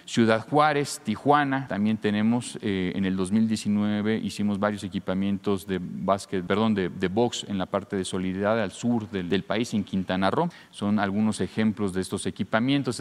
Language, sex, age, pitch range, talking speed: Spanish, male, 40-59, 95-120 Hz, 170 wpm